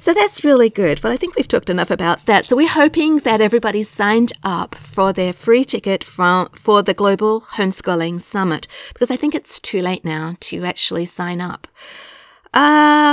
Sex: female